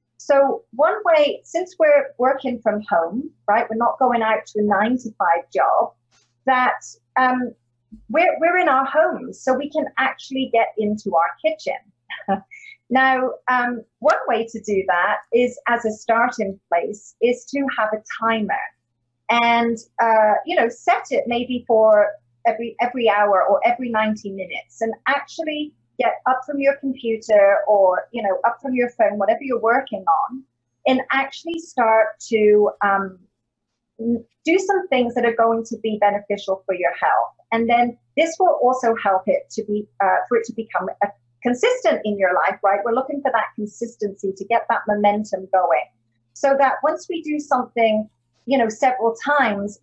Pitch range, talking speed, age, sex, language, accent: 205-265 Hz, 165 wpm, 40-59, female, English, British